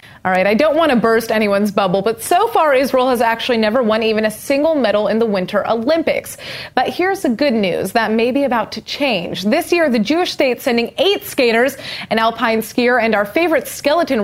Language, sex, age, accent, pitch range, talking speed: English, female, 30-49, American, 210-270 Hz, 220 wpm